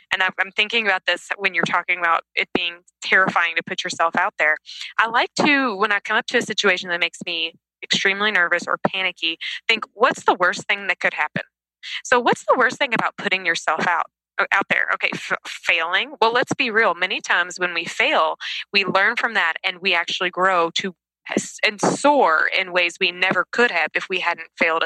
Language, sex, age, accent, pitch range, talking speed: English, female, 20-39, American, 175-210 Hz, 210 wpm